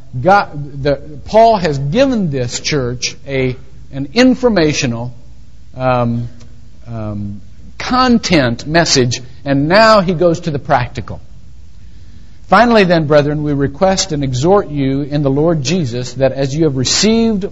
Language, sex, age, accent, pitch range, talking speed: English, male, 50-69, American, 125-175 Hz, 130 wpm